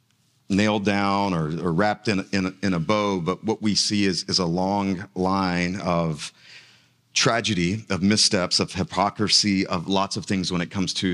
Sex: male